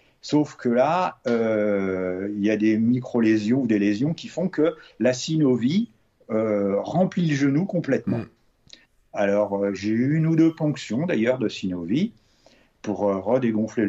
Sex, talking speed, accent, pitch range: male, 155 wpm, French, 110-150 Hz